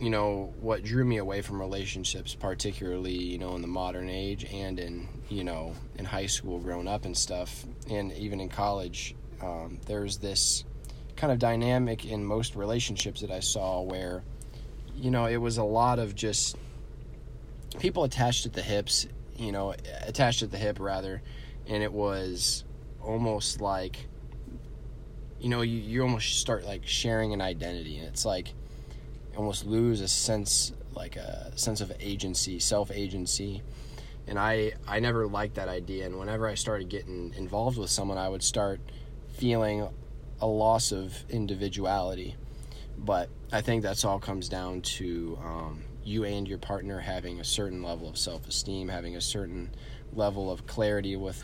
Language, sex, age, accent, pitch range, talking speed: English, male, 20-39, American, 95-110 Hz, 165 wpm